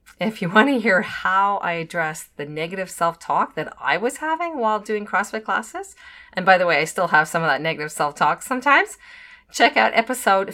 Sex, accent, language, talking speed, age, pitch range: female, American, English, 200 wpm, 40-59, 160-235 Hz